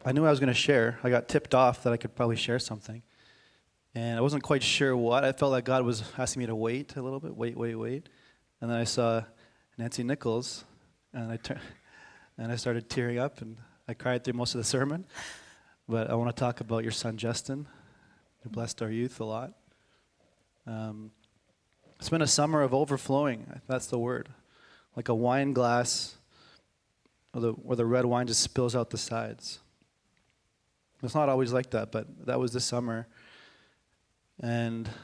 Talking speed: 190 wpm